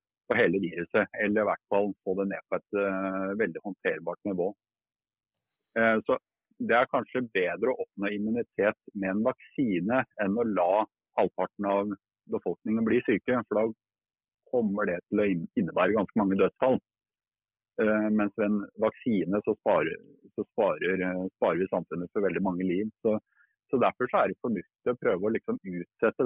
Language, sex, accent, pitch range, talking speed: English, male, Norwegian, 100-115 Hz, 165 wpm